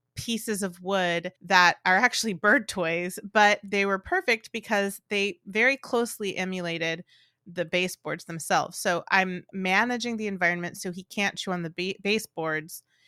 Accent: American